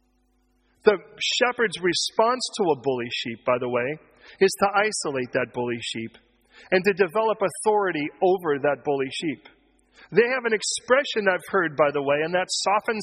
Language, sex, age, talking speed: English, male, 40-59, 165 wpm